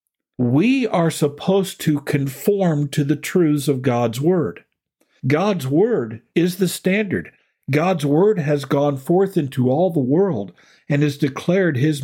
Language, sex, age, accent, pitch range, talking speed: English, male, 50-69, American, 130-170 Hz, 145 wpm